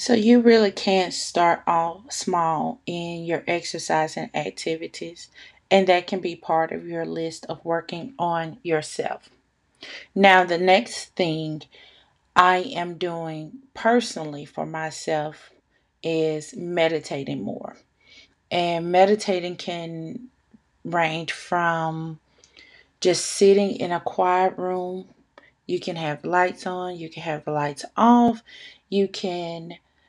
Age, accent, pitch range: 30-49, American, 165-195 Hz